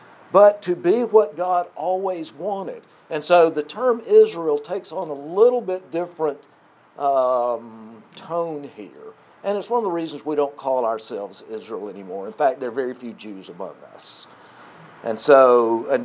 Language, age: English, 60-79